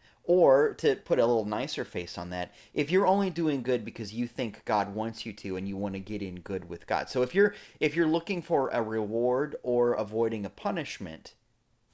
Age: 30-49